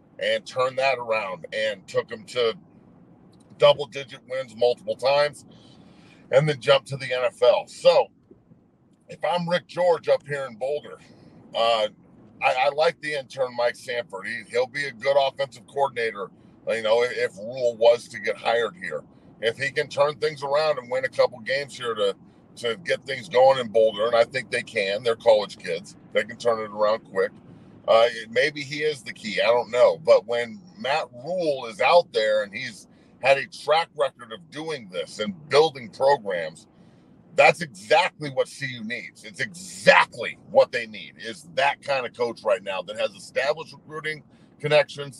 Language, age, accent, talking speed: English, 40-59, American, 180 wpm